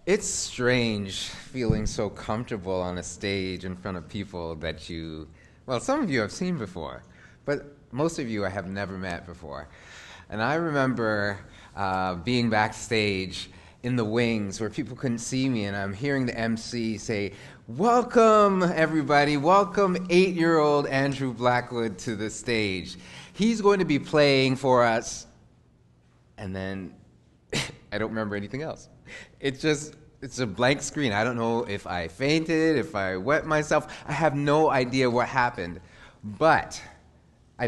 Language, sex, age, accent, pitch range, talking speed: English, male, 30-49, American, 100-145 Hz, 160 wpm